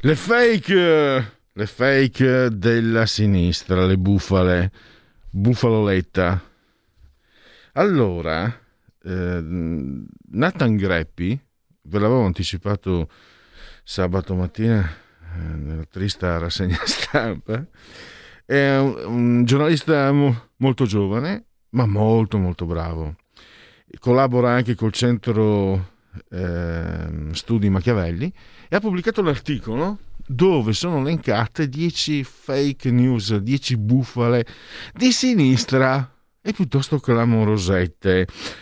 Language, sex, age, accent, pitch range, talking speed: Italian, male, 50-69, native, 90-130 Hz, 85 wpm